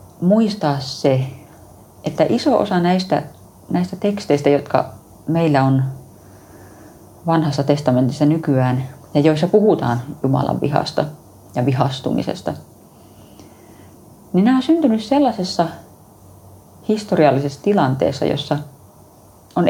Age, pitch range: 30-49, 110-175 Hz